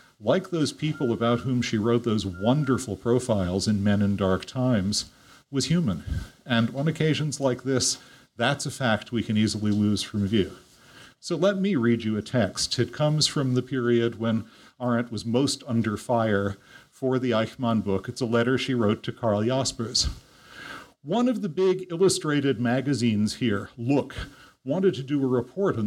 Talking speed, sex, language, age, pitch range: 175 wpm, male, English, 50-69, 115-150 Hz